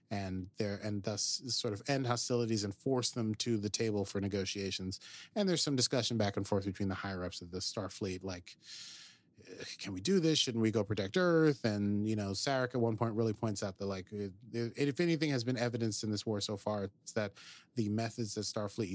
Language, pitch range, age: English, 100-130 Hz, 30-49